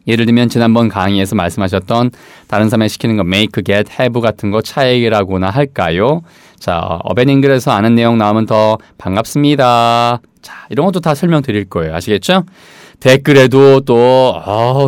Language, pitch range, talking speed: English, 100-145 Hz, 135 wpm